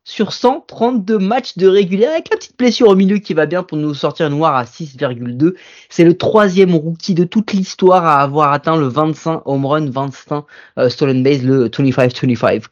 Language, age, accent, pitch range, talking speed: French, 20-39, French, 135-175 Hz, 190 wpm